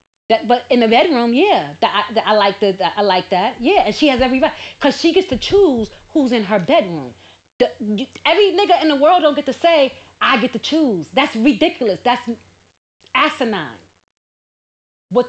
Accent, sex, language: American, female, English